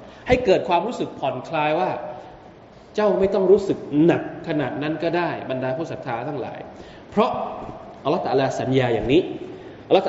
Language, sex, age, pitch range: Thai, male, 20-39, 140-225 Hz